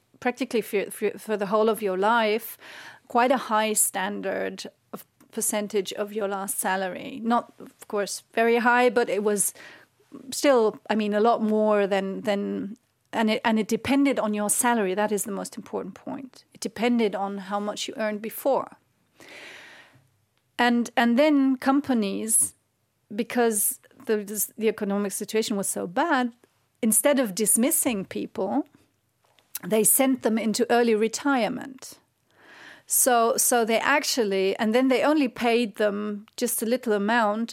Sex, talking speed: female, 150 wpm